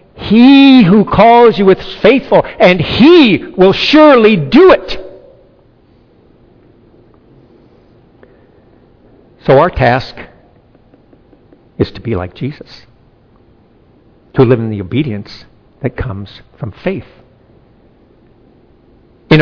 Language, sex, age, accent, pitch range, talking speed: English, male, 50-69, American, 125-200 Hz, 95 wpm